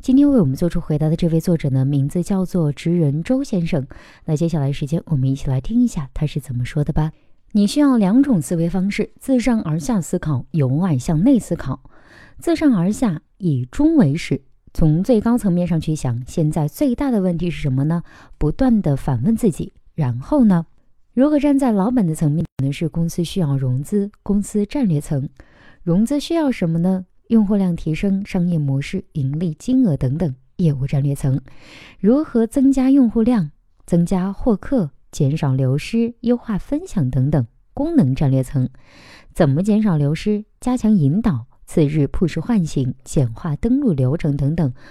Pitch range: 145-215 Hz